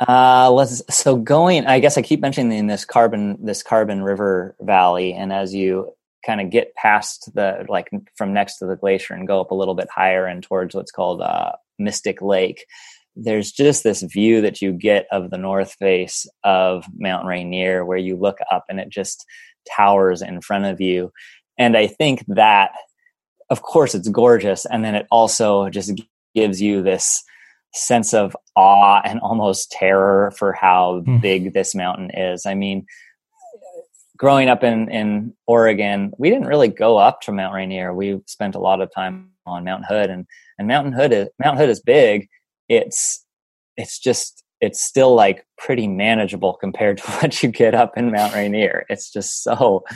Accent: American